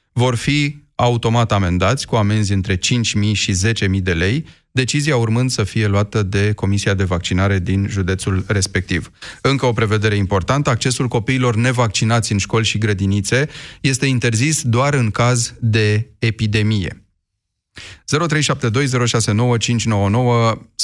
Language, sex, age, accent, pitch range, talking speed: Romanian, male, 30-49, native, 100-125 Hz, 125 wpm